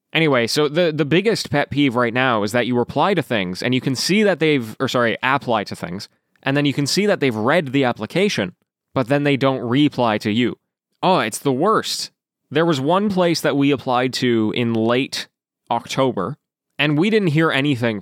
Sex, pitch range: male, 120-160 Hz